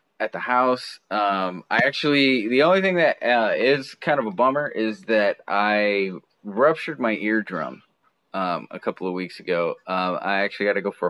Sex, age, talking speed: male, 20-39, 190 wpm